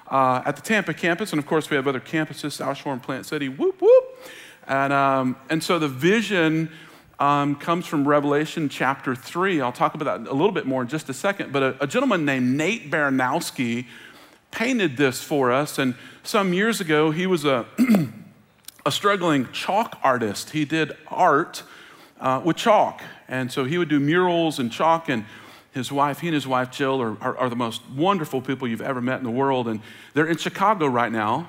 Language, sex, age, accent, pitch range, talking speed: English, male, 40-59, American, 130-170 Hz, 200 wpm